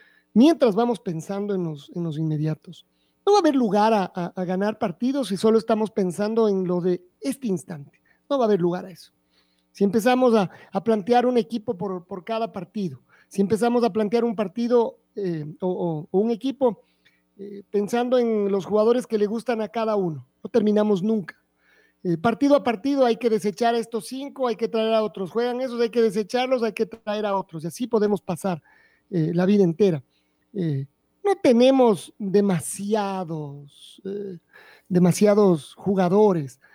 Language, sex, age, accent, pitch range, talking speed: Spanish, male, 40-59, Mexican, 185-235 Hz, 180 wpm